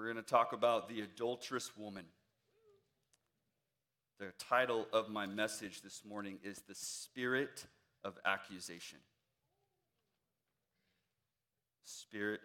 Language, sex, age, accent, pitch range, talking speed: English, male, 40-59, American, 125-170 Hz, 100 wpm